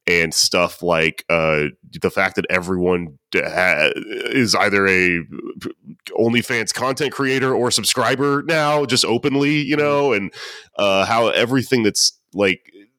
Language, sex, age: English, male, 30-49